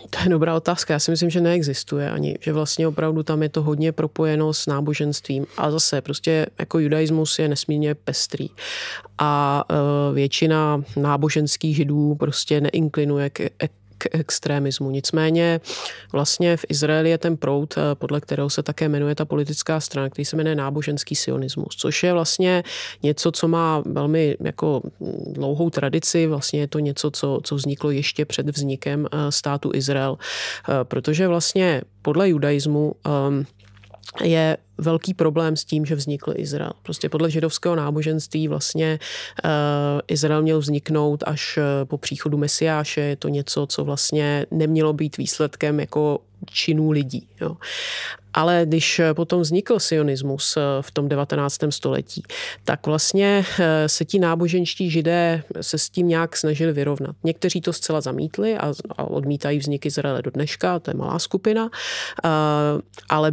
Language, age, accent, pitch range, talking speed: Czech, 30-49, native, 145-165 Hz, 145 wpm